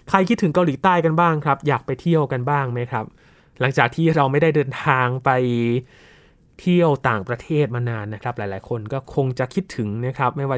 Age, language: 20-39, Thai